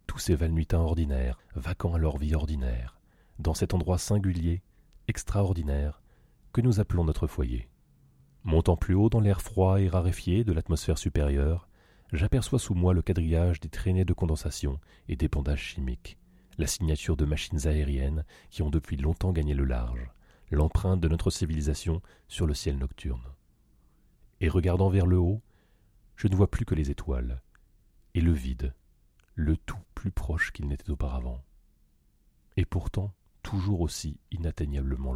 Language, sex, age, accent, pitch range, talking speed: French, male, 30-49, French, 75-95 Hz, 155 wpm